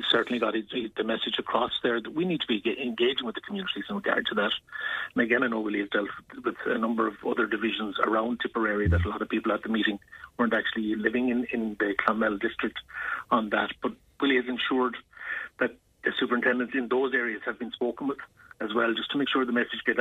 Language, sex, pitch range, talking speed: English, male, 110-125 Hz, 225 wpm